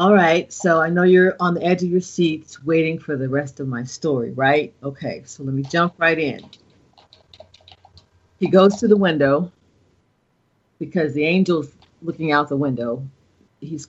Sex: female